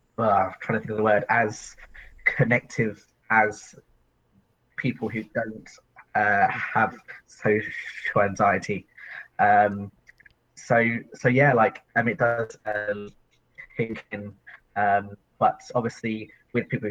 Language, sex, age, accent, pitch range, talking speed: English, male, 20-39, British, 100-115 Hz, 130 wpm